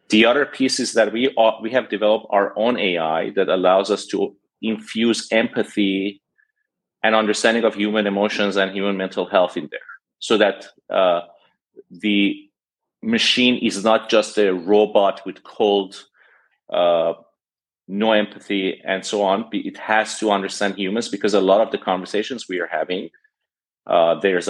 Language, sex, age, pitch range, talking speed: English, male, 30-49, 100-115 Hz, 155 wpm